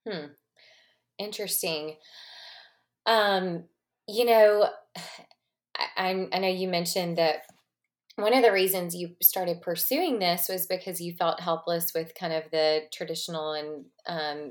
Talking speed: 130 wpm